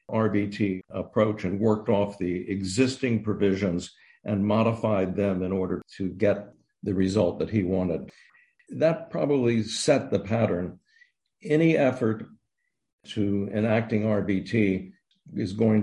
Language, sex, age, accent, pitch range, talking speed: English, male, 60-79, American, 95-110 Hz, 120 wpm